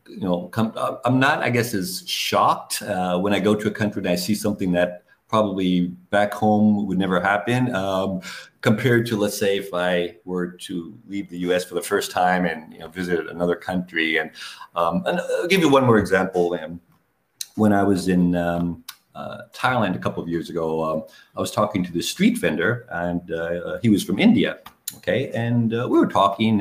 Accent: American